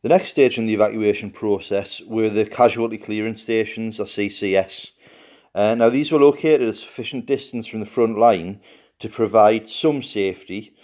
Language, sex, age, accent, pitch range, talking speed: English, male, 40-59, British, 100-120 Hz, 165 wpm